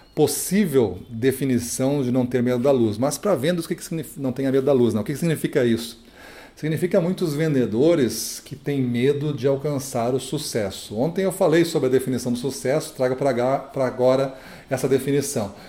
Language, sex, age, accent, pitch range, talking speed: Portuguese, male, 40-59, Brazilian, 120-145 Hz, 185 wpm